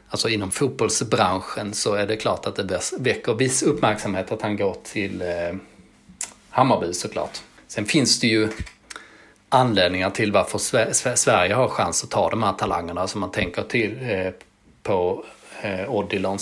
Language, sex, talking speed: Swedish, male, 145 wpm